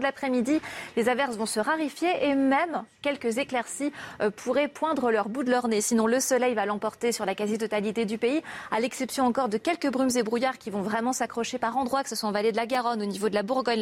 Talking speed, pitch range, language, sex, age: 240 wpm, 215-270 Hz, French, female, 30-49